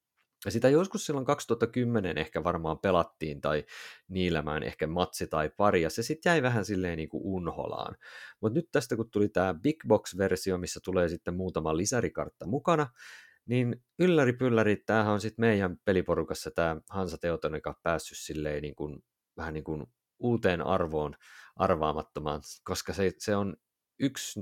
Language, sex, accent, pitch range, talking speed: Finnish, male, native, 80-110 Hz, 155 wpm